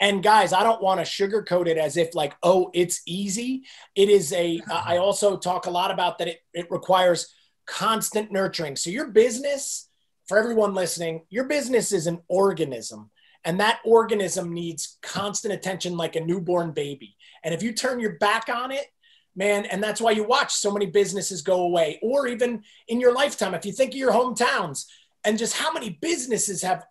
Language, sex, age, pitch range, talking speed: English, male, 30-49, 180-230 Hz, 195 wpm